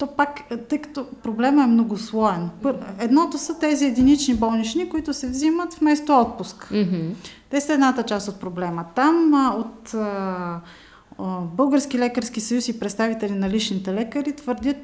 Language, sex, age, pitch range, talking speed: Bulgarian, female, 30-49, 205-265 Hz, 140 wpm